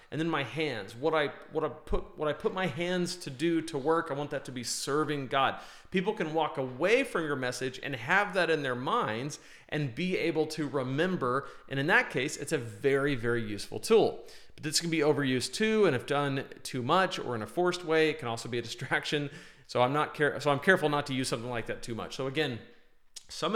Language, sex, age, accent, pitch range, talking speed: English, male, 40-59, American, 130-170 Hz, 235 wpm